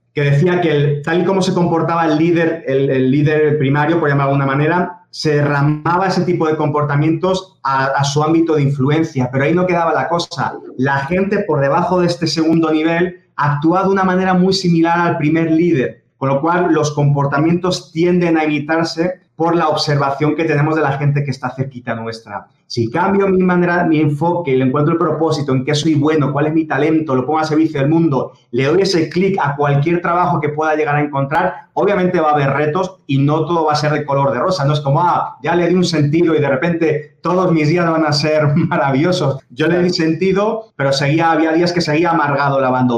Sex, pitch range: male, 140-170 Hz